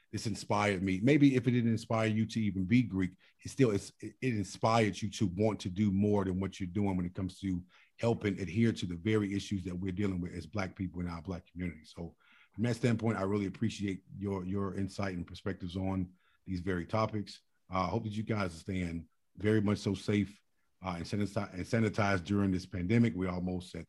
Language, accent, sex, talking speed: English, American, male, 215 wpm